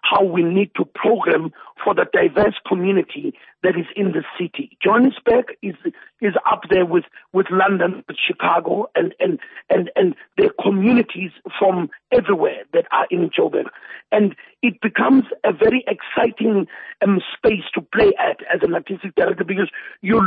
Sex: male